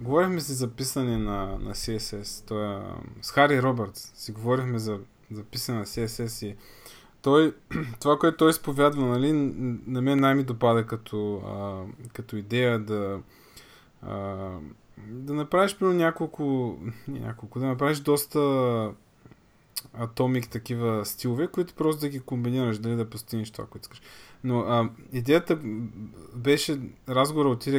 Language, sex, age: Bulgarian, male, 20-39